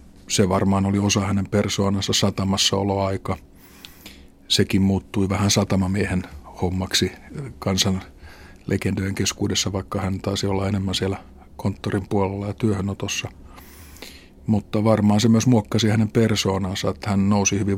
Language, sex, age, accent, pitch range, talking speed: Finnish, male, 50-69, native, 95-105 Hz, 120 wpm